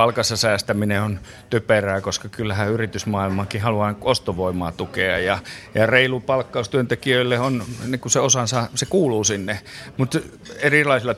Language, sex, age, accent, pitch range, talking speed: Finnish, male, 30-49, native, 110-130 Hz, 125 wpm